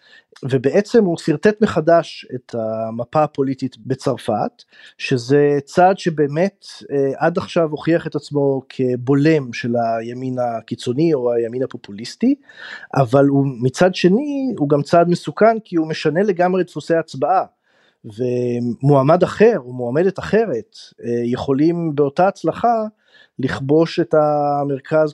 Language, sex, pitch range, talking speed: Hebrew, male, 130-180 Hz, 115 wpm